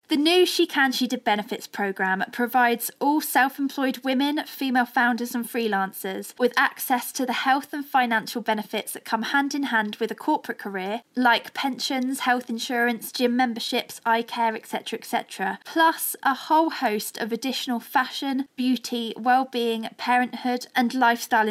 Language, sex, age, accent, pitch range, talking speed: English, female, 20-39, British, 225-270 Hz, 155 wpm